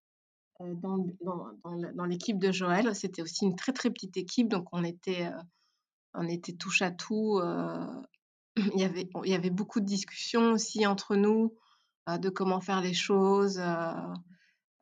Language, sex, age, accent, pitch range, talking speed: French, female, 20-39, French, 180-210 Hz, 155 wpm